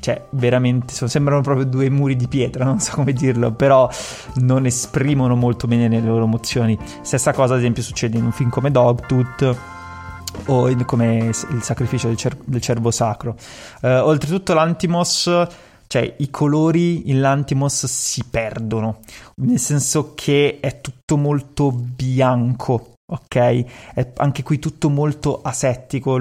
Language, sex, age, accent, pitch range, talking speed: Italian, male, 20-39, native, 120-140 Hz, 140 wpm